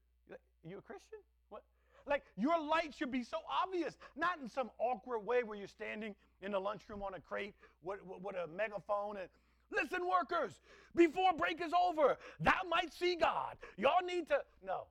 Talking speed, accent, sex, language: 180 wpm, American, male, English